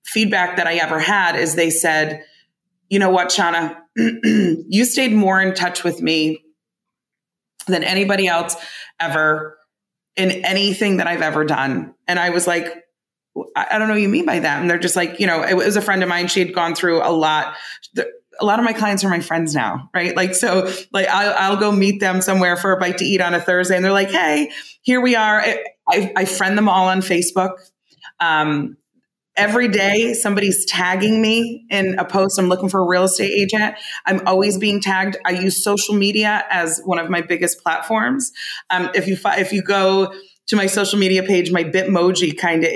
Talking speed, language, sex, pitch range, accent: 205 wpm, English, female, 170-200 Hz, American